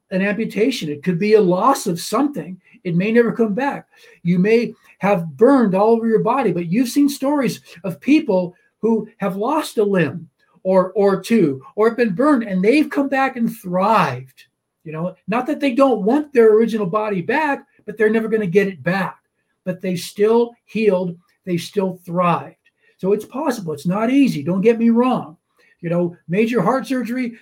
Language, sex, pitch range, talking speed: English, male, 175-230 Hz, 190 wpm